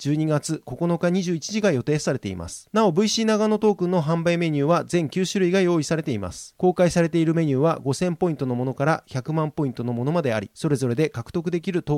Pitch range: 140-180 Hz